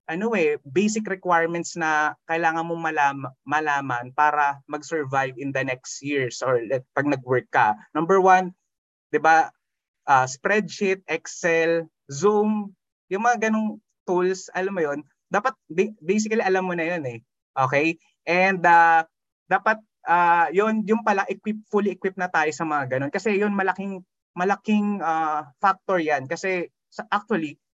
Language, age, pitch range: Filipino, 20-39, 145-195 Hz